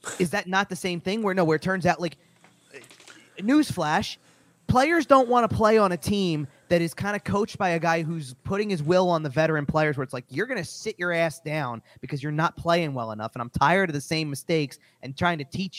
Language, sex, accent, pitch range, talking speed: English, male, American, 145-190 Hz, 245 wpm